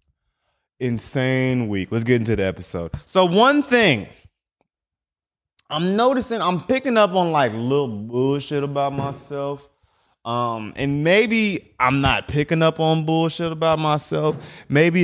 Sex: male